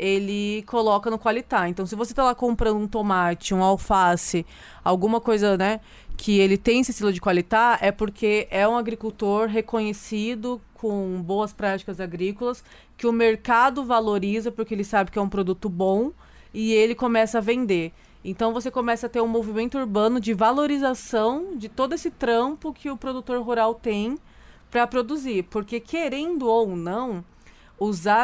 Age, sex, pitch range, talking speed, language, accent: 20-39, female, 190-230 Hz, 165 wpm, Portuguese, Brazilian